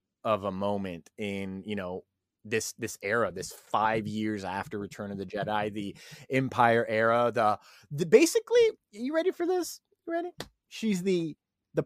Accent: American